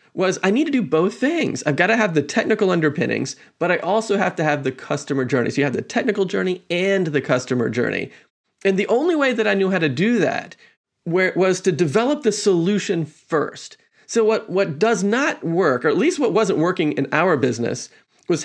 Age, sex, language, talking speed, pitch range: 30-49, male, English, 215 wpm, 155-220 Hz